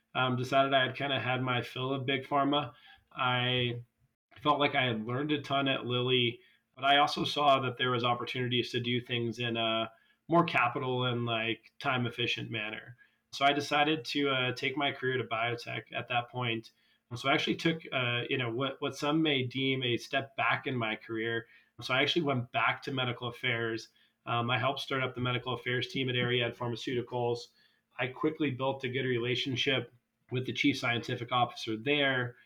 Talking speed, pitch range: 195 wpm, 120-135 Hz